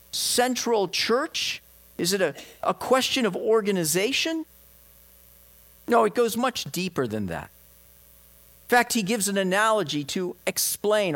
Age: 50-69